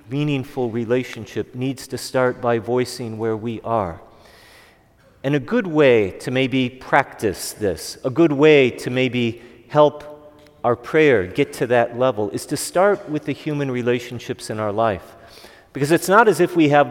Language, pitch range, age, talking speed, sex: English, 115-140 Hz, 40-59, 165 wpm, male